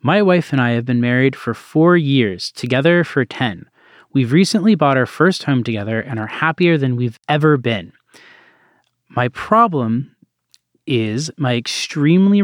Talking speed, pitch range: 155 wpm, 115-150 Hz